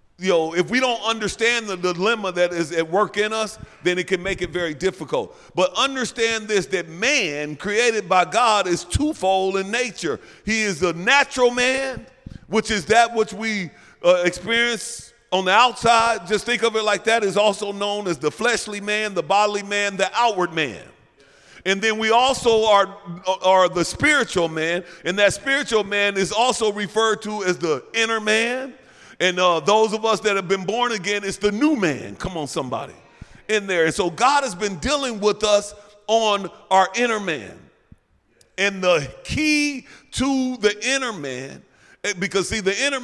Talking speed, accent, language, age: 180 wpm, American, English, 40-59